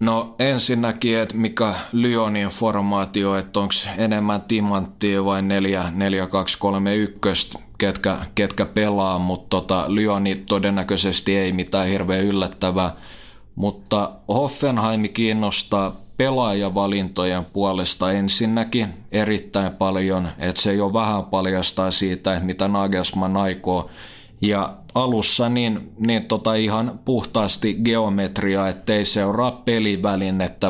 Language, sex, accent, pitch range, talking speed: Finnish, male, native, 95-110 Hz, 100 wpm